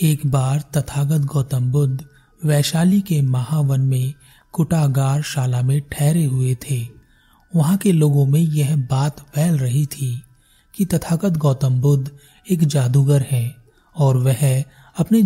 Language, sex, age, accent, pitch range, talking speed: Hindi, male, 30-49, native, 135-155 Hz, 135 wpm